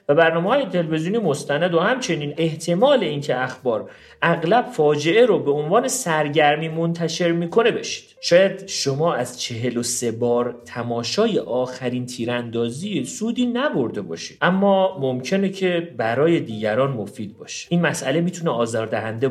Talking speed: 135 wpm